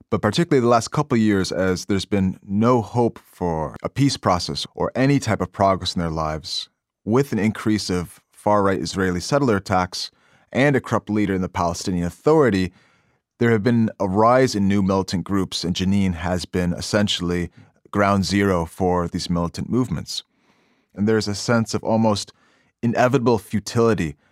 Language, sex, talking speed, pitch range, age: English, male, 170 wpm, 90-110 Hz, 30-49